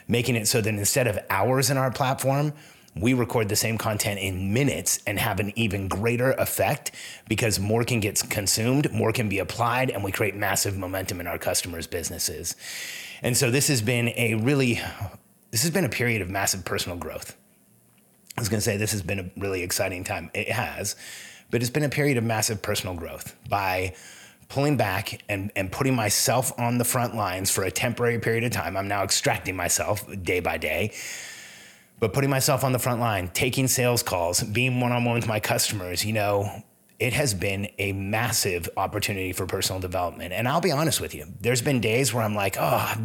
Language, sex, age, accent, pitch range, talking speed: English, male, 30-49, American, 100-125 Hz, 200 wpm